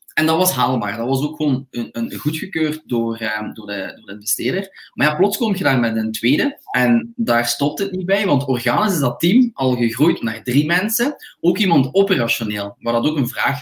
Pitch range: 120-155 Hz